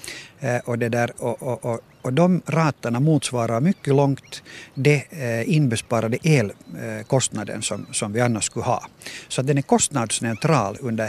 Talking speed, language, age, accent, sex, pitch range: 135 wpm, Swedish, 50-69, Finnish, male, 115-145 Hz